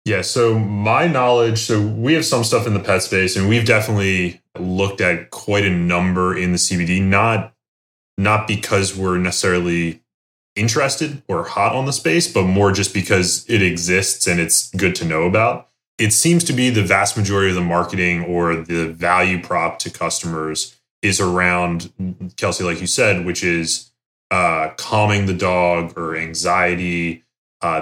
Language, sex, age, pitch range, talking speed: English, male, 20-39, 90-110 Hz, 170 wpm